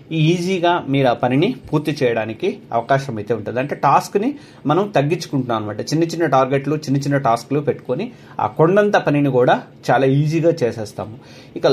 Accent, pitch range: native, 125-170 Hz